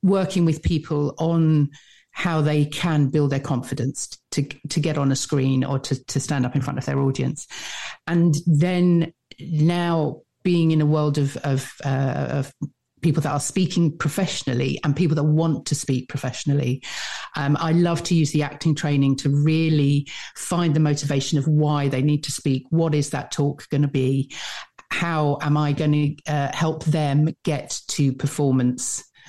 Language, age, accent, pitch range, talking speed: English, 50-69, British, 140-165 Hz, 175 wpm